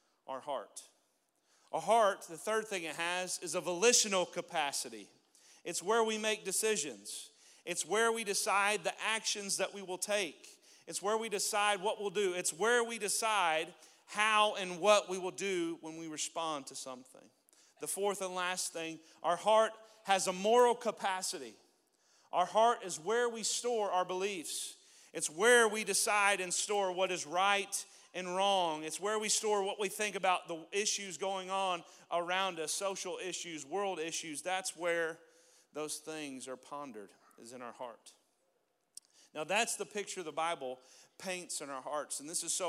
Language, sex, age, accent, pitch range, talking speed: English, male, 40-59, American, 170-210 Hz, 170 wpm